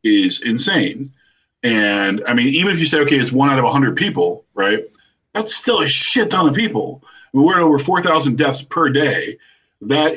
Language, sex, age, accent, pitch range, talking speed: English, male, 40-59, American, 110-145 Hz, 205 wpm